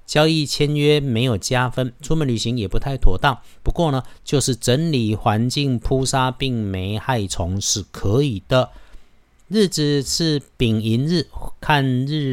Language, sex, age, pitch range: Chinese, male, 50-69, 105-135 Hz